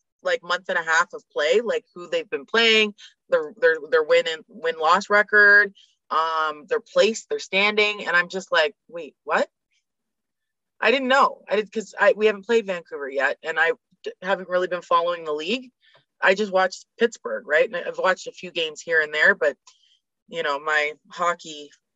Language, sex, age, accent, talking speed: English, female, 20-39, American, 190 wpm